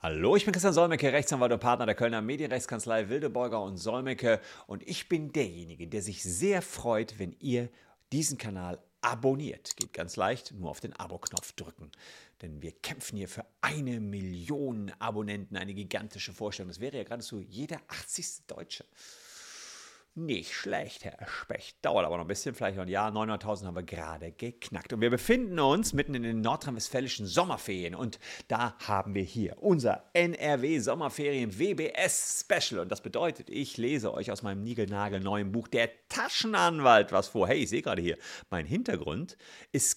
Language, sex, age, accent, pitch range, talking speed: German, male, 50-69, German, 100-145 Hz, 165 wpm